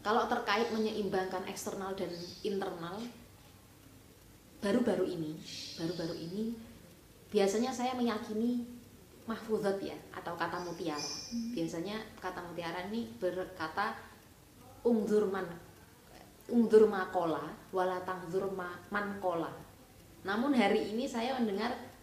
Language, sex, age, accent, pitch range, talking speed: Indonesian, female, 20-39, native, 170-225 Hz, 85 wpm